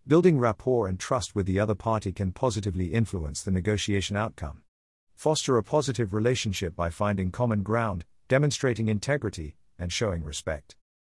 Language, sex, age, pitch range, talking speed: English, male, 50-69, 95-125 Hz, 145 wpm